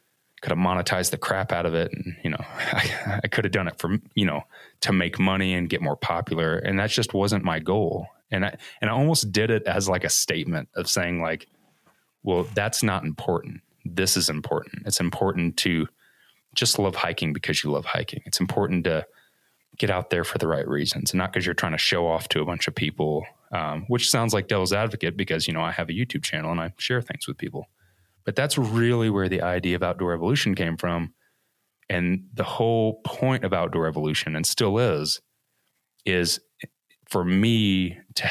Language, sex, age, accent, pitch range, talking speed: English, male, 20-39, American, 85-105 Hz, 205 wpm